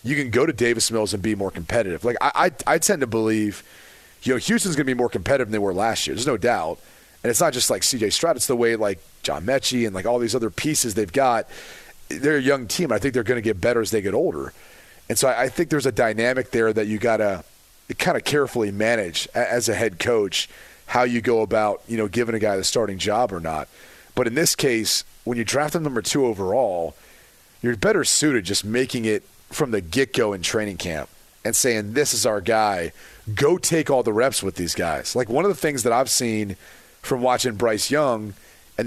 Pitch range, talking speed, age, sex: 110-140 Hz, 240 wpm, 30-49, male